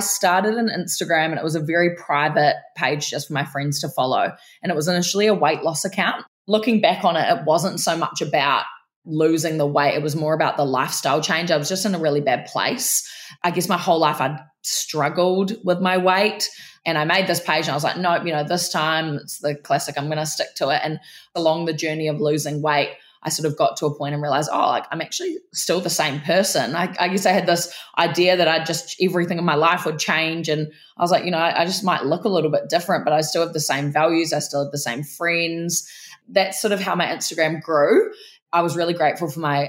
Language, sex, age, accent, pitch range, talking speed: English, female, 20-39, Australian, 150-180 Hz, 250 wpm